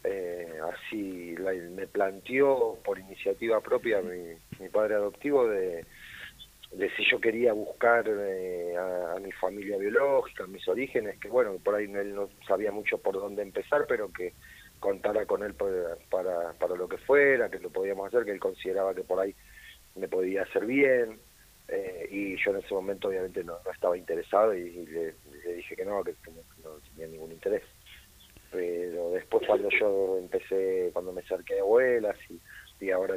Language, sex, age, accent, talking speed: Spanish, male, 40-59, Argentinian, 180 wpm